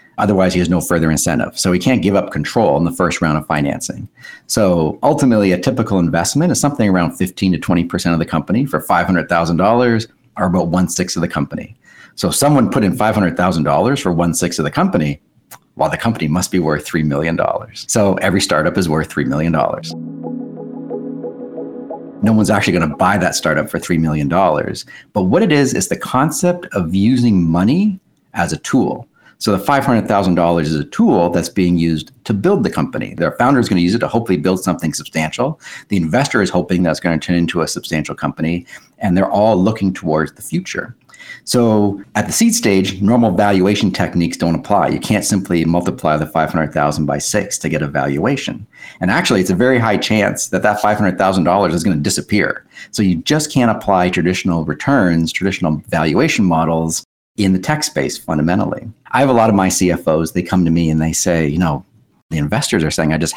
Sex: male